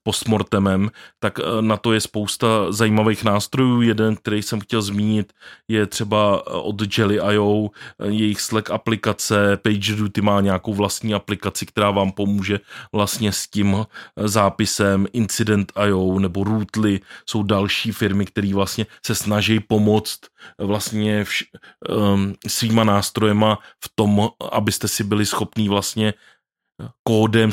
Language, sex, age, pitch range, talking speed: Czech, male, 20-39, 100-110 Hz, 120 wpm